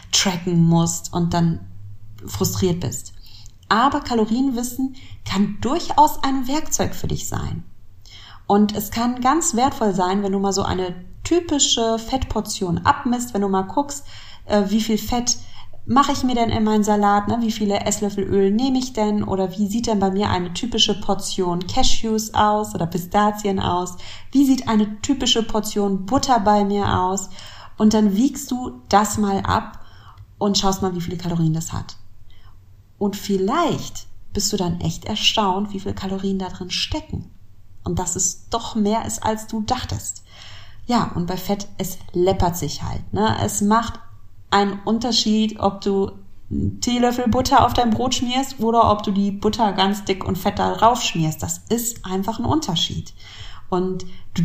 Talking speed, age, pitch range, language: 165 wpm, 30-49, 160-225 Hz, German